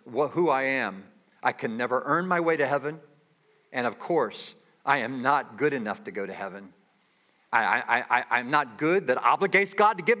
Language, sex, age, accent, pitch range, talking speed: English, male, 50-69, American, 140-205 Hz, 180 wpm